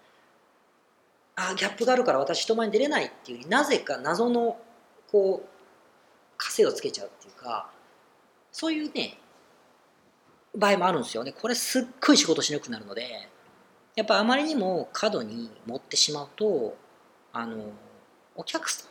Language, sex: Japanese, female